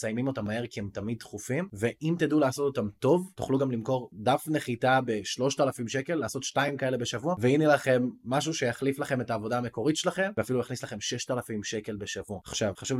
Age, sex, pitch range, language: 20-39, male, 110-145 Hz, Hebrew